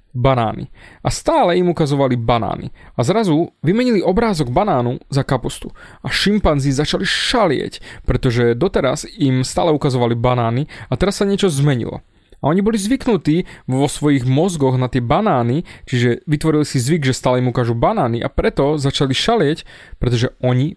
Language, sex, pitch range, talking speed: Slovak, male, 125-170 Hz, 155 wpm